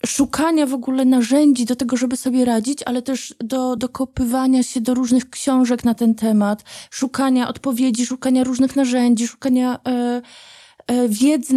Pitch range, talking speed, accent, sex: 245-280 Hz, 150 wpm, native, female